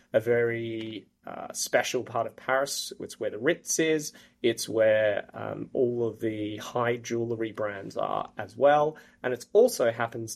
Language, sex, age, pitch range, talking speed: English, male, 30-49, 115-140 Hz, 160 wpm